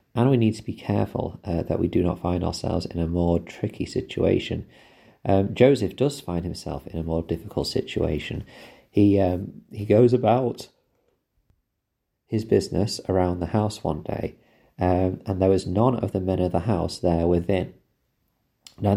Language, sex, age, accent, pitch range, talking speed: English, male, 40-59, British, 85-105 Hz, 170 wpm